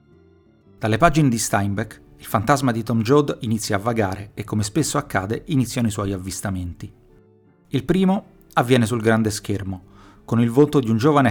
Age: 30-49